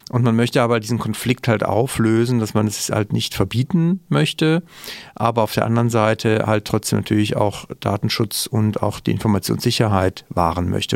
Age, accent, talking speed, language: 40-59, German, 170 wpm, German